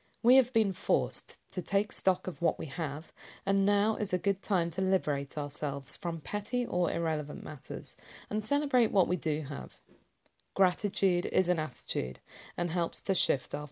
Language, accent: English, British